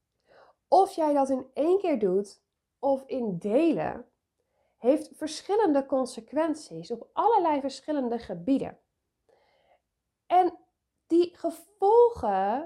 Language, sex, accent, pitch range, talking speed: Dutch, female, Dutch, 200-290 Hz, 95 wpm